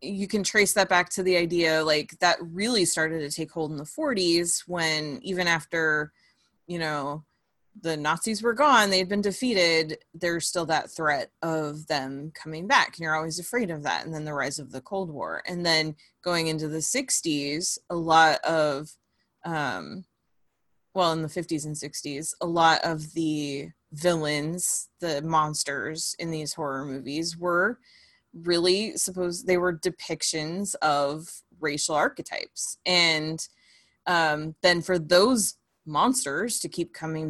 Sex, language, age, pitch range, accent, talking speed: female, English, 20-39, 155-180 Hz, American, 155 wpm